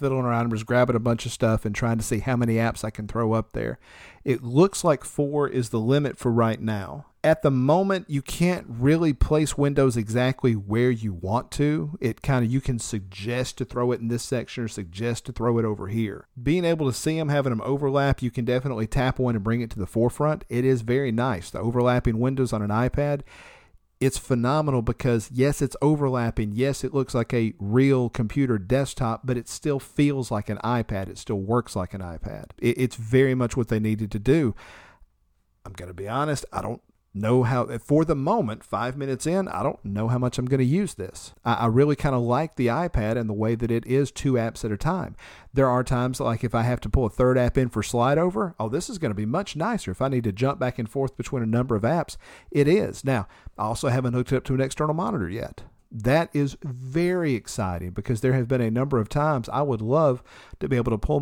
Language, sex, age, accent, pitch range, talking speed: English, male, 50-69, American, 115-140 Hz, 235 wpm